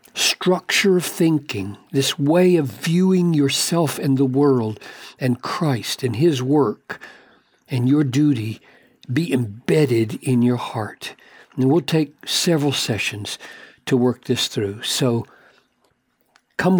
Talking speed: 125 wpm